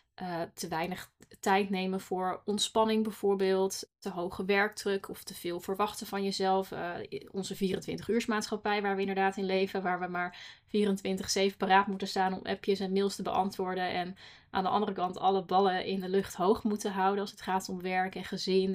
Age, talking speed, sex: 20-39, 190 wpm, female